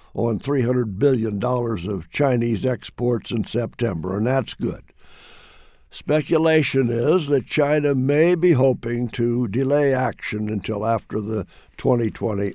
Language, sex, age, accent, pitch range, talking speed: English, male, 60-79, American, 115-150 Hz, 120 wpm